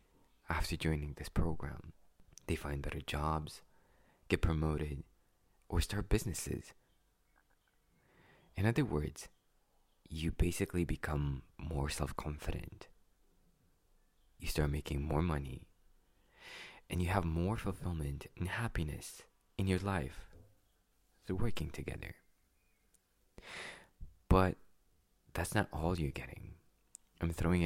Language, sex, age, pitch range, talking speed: English, male, 20-39, 75-90 Hz, 100 wpm